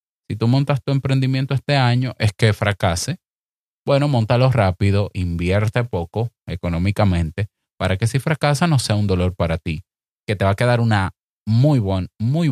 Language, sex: Spanish, male